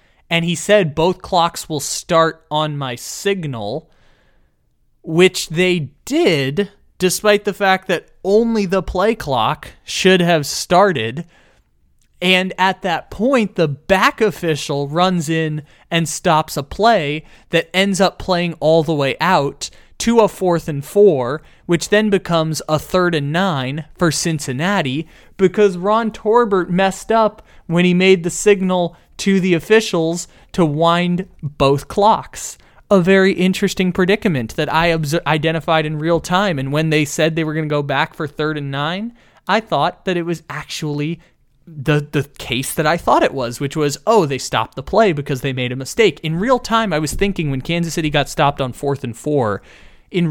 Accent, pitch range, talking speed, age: American, 145-190 Hz, 170 wpm, 20-39